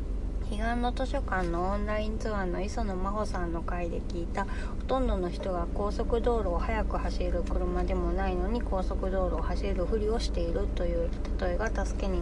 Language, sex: Japanese, female